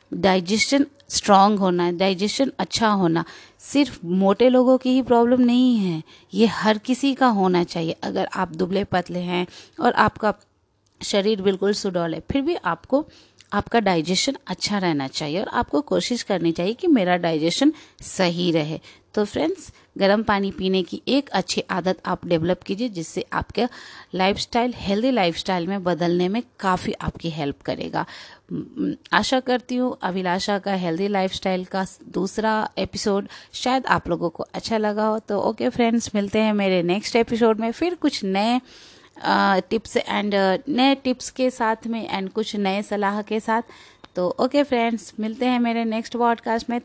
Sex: female